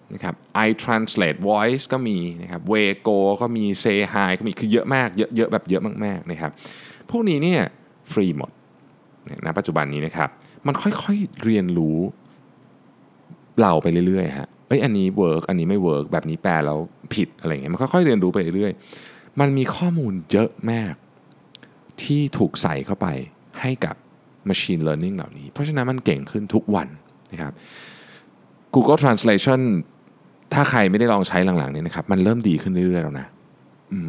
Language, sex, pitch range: Thai, male, 90-140 Hz